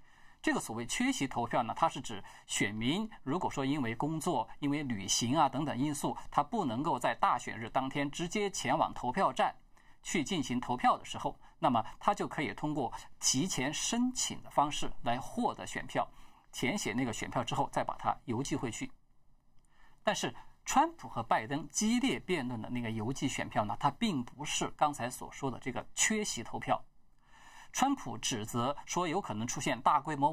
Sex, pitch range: male, 120-180 Hz